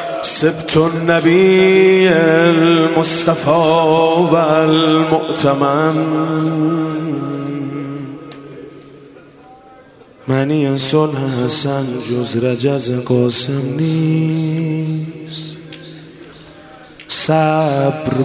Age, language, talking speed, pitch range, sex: 30-49, Persian, 35 wpm, 135-160 Hz, male